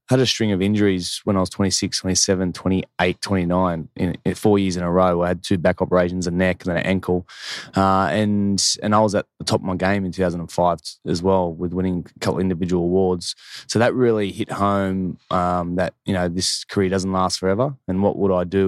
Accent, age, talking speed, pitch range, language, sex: Australian, 20-39, 220 wpm, 90-100 Hz, English, male